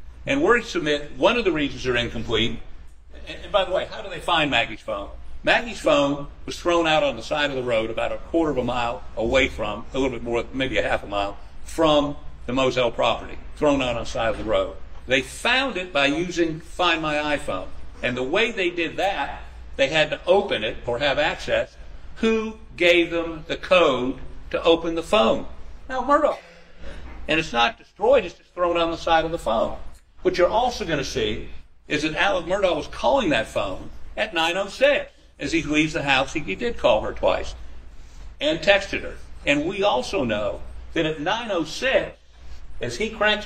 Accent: American